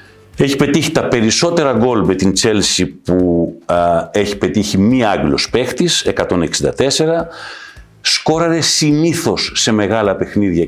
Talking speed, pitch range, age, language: 120 wpm, 85-135 Hz, 50-69, Greek